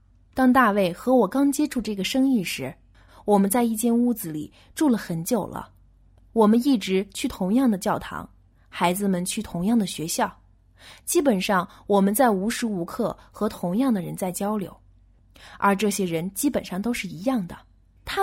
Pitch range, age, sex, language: 170-245 Hz, 20-39, female, Chinese